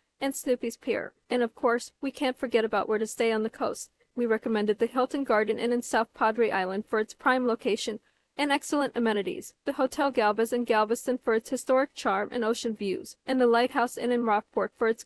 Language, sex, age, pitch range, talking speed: English, female, 40-59, 220-255 Hz, 210 wpm